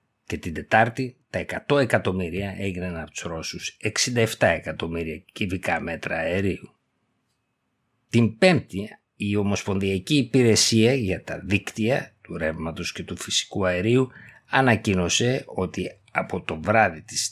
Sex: male